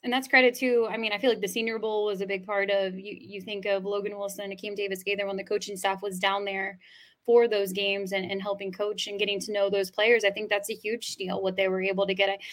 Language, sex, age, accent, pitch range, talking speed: English, female, 10-29, American, 195-255 Hz, 280 wpm